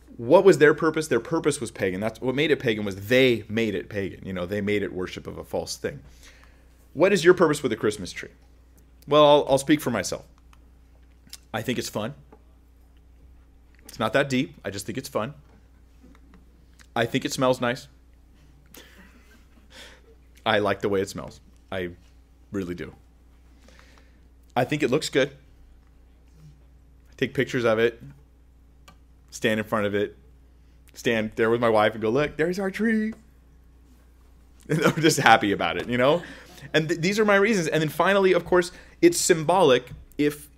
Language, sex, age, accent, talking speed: English, male, 30-49, American, 175 wpm